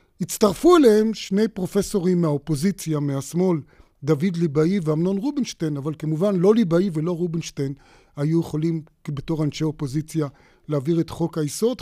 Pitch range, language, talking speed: 155-195 Hz, Hebrew, 125 wpm